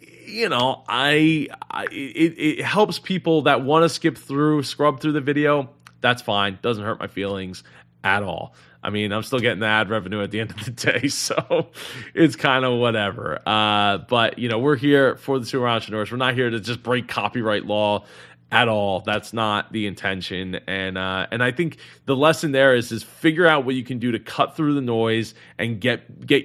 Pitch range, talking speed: 105-135 Hz, 210 wpm